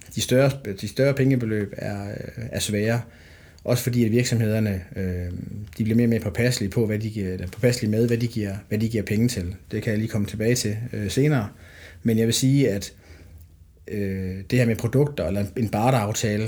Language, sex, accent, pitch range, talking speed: Danish, male, native, 95-120 Hz, 175 wpm